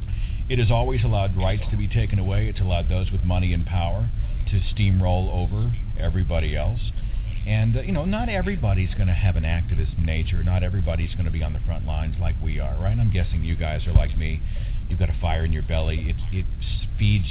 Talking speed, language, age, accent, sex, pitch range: 215 wpm, English, 50-69, American, male, 90-110 Hz